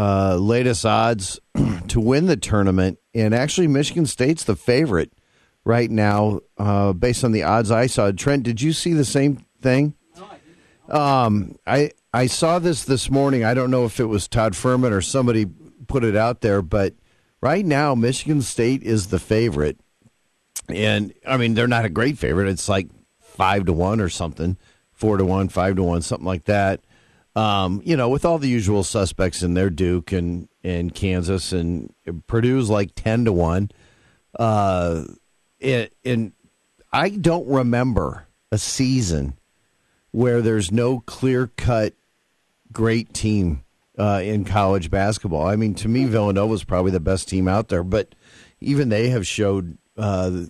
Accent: American